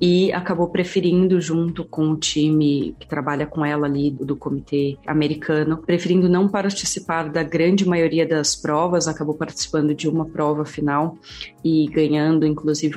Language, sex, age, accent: Portuguese, female, 30-49, Brazilian